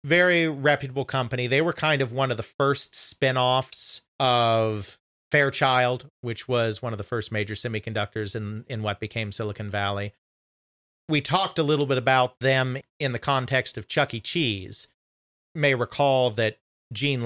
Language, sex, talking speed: English, male, 160 wpm